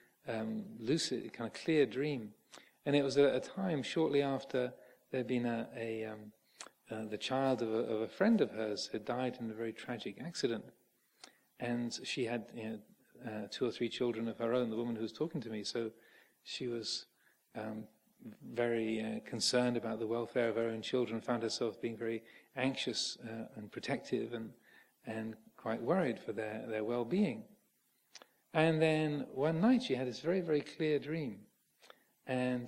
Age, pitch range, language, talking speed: 40-59, 115-145 Hz, English, 175 wpm